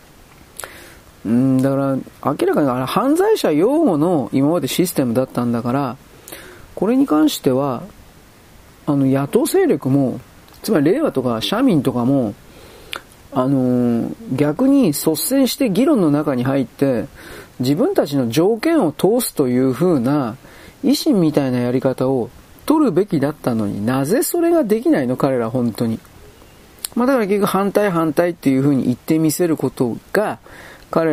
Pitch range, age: 120-195 Hz, 40-59